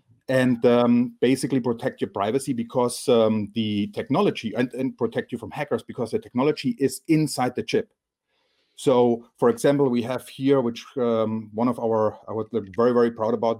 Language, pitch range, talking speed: English, 110-125 Hz, 175 wpm